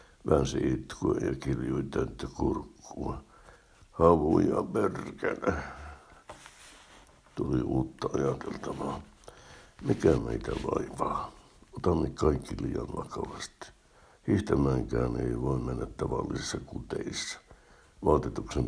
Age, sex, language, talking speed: 60-79, male, Finnish, 80 wpm